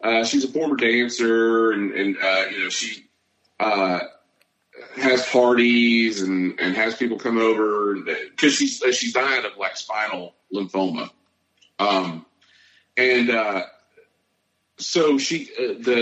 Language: English